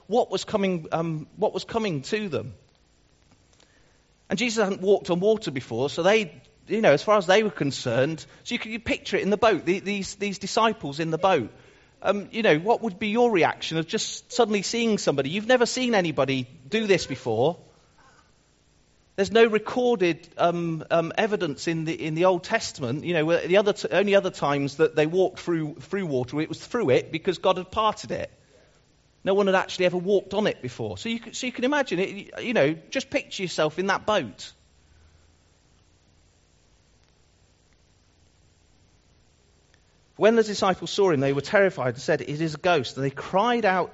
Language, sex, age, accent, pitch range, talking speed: English, male, 40-59, British, 125-200 Hz, 190 wpm